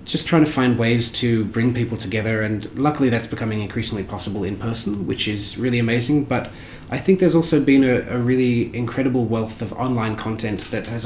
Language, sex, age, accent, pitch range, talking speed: English, male, 20-39, Australian, 110-150 Hz, 200 wpm